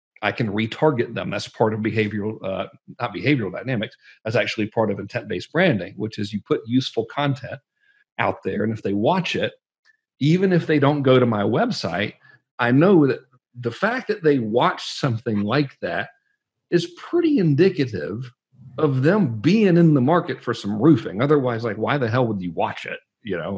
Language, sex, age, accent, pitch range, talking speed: English, male, 50-69, American, 115-155 Hz, 185 wpm